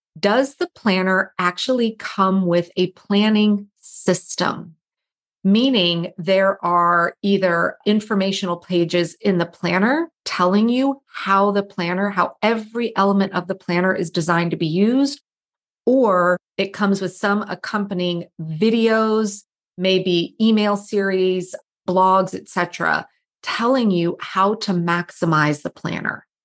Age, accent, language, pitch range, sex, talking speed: 30-49, American, English, 180-215 Hz, female, 120 wpm